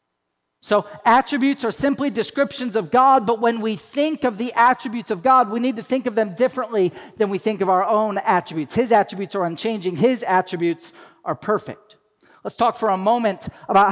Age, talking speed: 40-59, 190 wpm